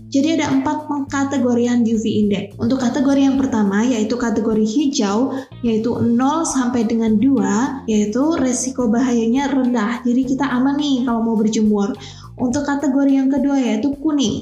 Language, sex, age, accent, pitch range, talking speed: Indonesian, female, 20-39, native, 225-265 Hz, 145 wpm